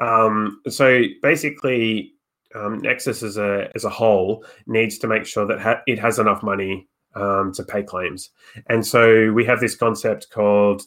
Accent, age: Australian, 20-39